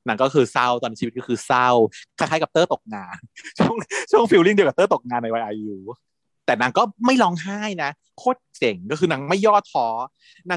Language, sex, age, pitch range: Thai, male, 30-49, 125-180 Hz